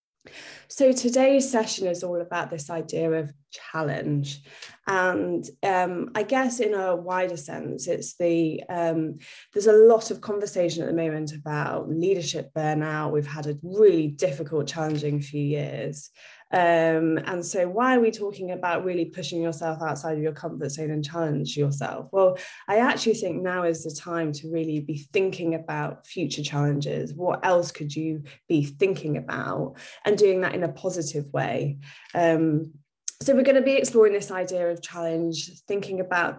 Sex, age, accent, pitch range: female, 20-39, British, 155-190 Hz